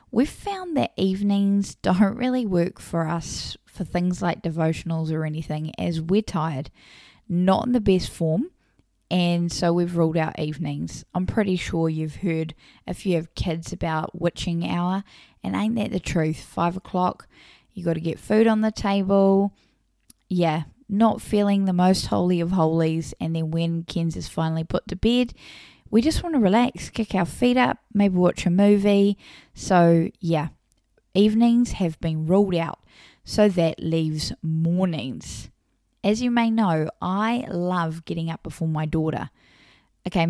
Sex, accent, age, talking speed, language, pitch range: female, Australian, 10-29, 160 wpm, English, 165-205 Hz